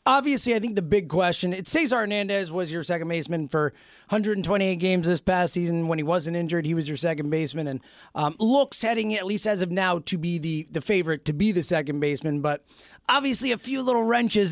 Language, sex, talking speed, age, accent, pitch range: English, male, 220 wpm, 30-49, American, 165-220 Hz